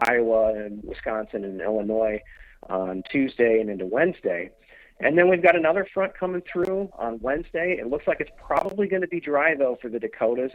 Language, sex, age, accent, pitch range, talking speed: English, male, 40-59, American, 105-145 Hz, 190 wpm